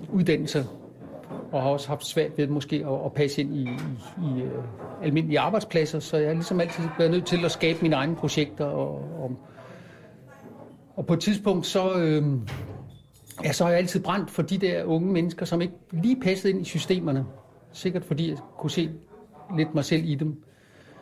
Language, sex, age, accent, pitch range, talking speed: Danish, male, 60-79, native, 145-175 Hz, 185 wpm